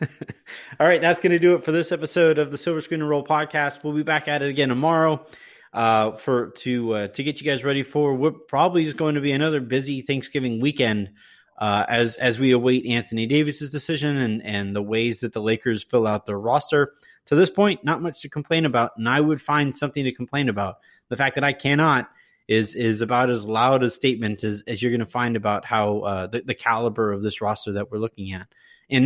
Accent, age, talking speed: American, 30-49, 225 wpm